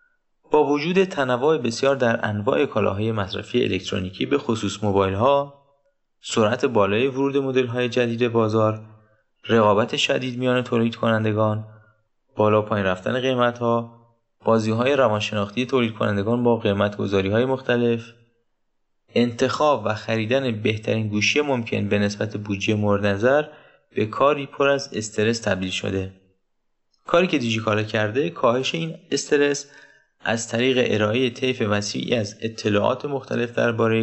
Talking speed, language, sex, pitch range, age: 115 wpm, Persian, male, 105-130 Hz, 20-39